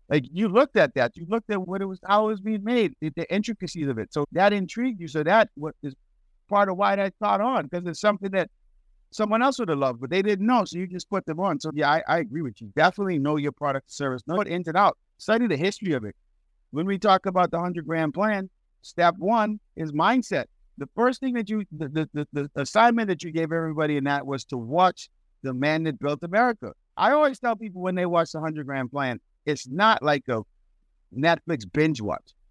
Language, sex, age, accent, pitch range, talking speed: English, male, 50-69, American, 140-205 Hz, 235 wpm